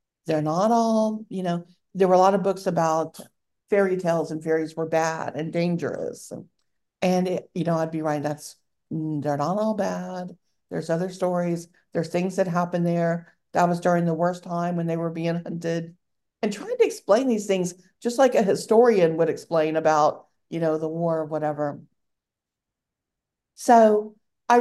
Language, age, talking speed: English, 50-69, 175 wpm